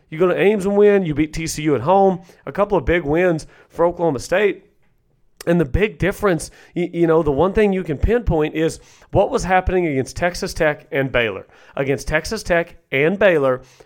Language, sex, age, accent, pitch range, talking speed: English, male, 40-59, American, 150-190 Hz, 195 wpm